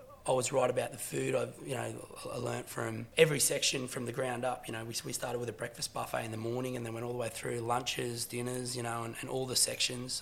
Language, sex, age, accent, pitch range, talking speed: English, male, 20-39, Australian, 120-145 Hz, 270 wpm